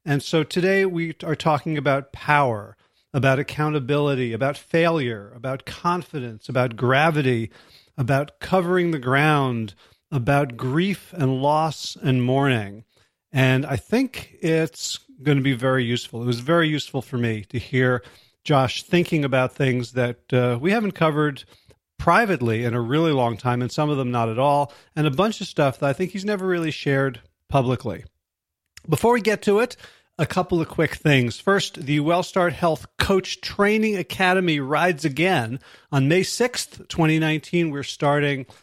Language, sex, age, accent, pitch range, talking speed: English, male, 40-59, American, 130-170 Hz, 160 wpm